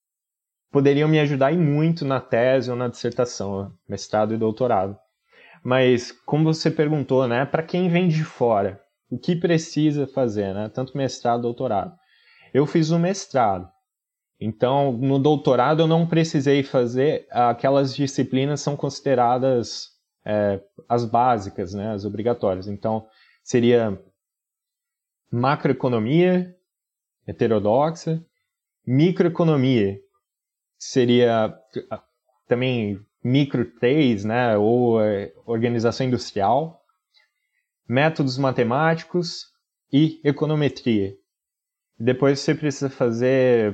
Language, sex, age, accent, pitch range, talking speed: Portuguese, male, 20-39, Brazilian, 120-155 Hz, 100 wpm